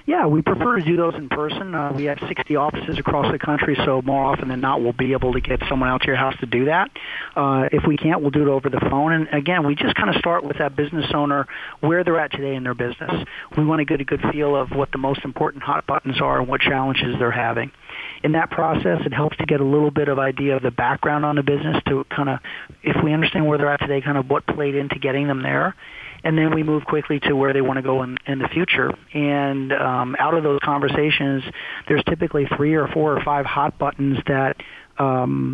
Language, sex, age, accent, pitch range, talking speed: English, male, 40-59, American, 135-150 Hz, 255 wpm